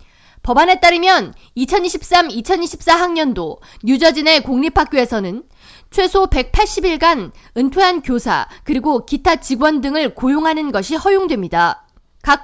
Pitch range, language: 250-345 Hz, Korean